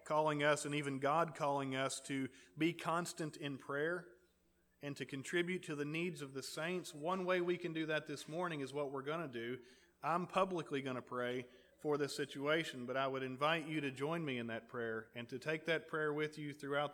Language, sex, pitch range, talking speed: English, male, 130-165 Hz, 215 wpm